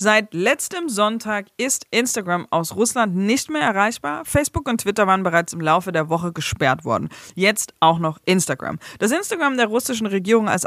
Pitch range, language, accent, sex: 165-220 Hz, German, German, female